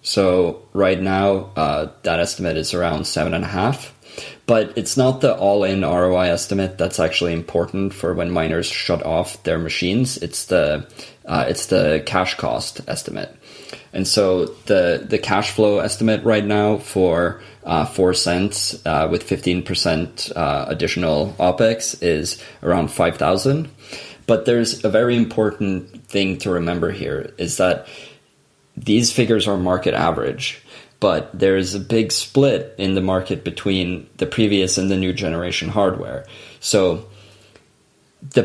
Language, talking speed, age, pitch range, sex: English, 150 wpm, 20-39, 90-110 Hz, male